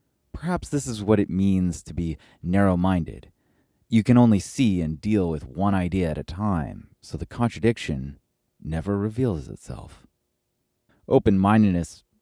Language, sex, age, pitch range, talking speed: English, male, 30-49, 80-100 Hz, 135 wpm